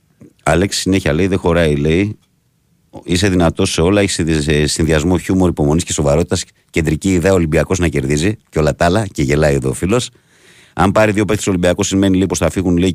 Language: Greek